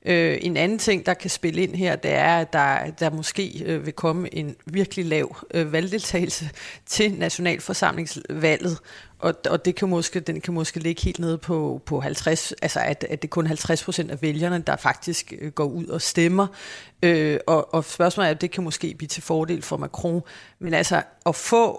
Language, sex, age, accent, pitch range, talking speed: Danish, female, 40-59, native, 155-180 Hz, 200 wpm